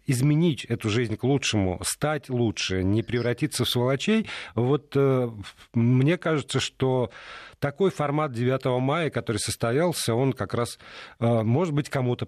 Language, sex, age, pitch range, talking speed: Russian, male, 40-59, 115-150 Hz, 140 wpm